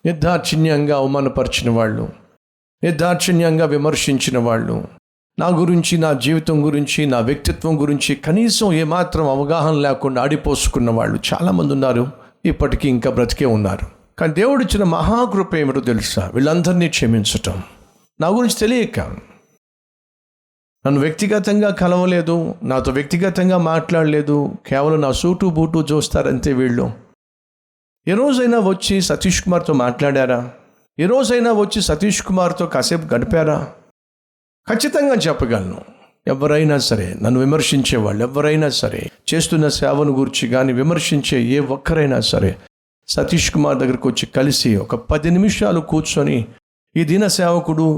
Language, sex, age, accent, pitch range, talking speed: Telugu, male, 50-69, native, 130-175 Hz, 115 wpm